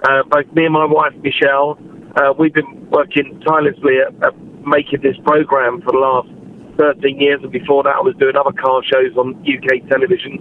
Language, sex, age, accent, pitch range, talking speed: English, male, 40-59, British, 140-165 Hz, 195 wpm